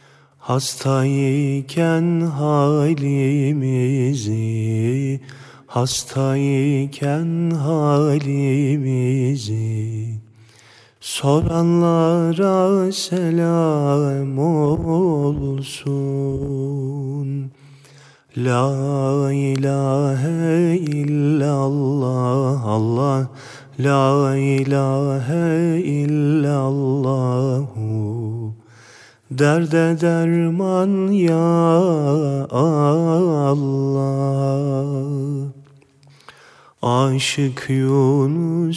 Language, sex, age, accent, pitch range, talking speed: Turkish, male, 40-59, native, 135-150 Hz, 35 wpm